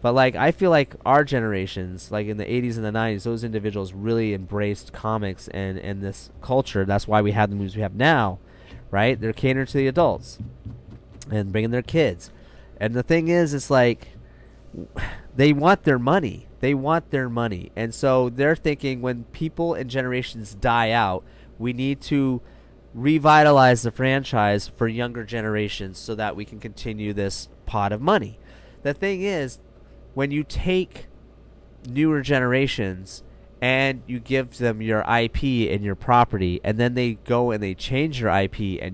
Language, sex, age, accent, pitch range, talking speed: English, male, 30-49, American, 105-135 Hz, 170 wpm